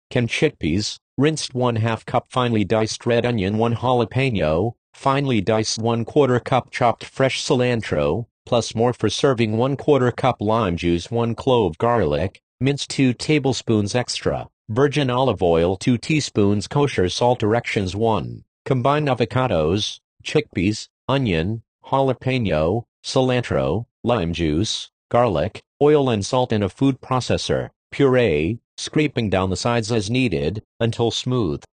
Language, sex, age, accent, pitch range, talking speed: English, male, 40-59, American, 110-130 Hz, 130 wpm